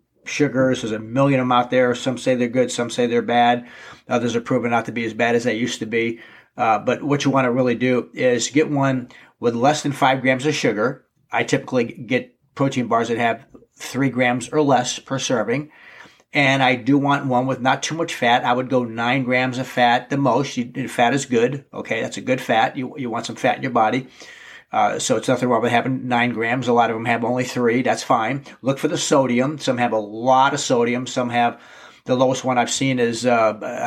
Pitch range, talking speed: 120-135 Hz, 235 wpm